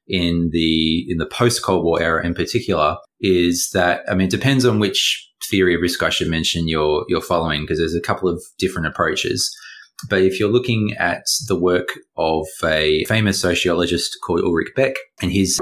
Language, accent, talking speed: English, Australian, 190 wpm